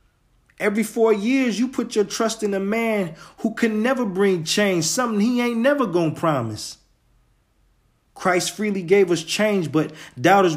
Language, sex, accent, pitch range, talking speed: English, male, American, 155-205 Hz, 160 wpm